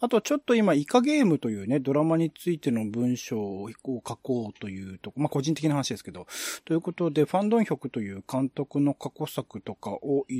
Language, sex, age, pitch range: Japanese, male, 40-59, 110-160 Hz